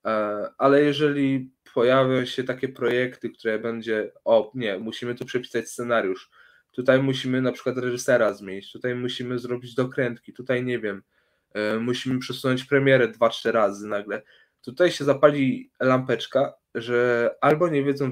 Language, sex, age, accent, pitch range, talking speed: Polish, male, 20-39, native, 115-130 Hz, 140 wpm